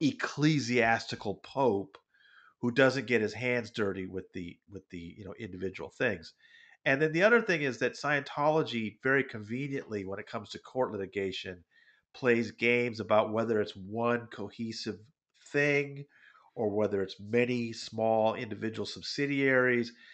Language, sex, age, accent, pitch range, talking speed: English, male, 40-59, American, 105-150 Hz, 140 wpm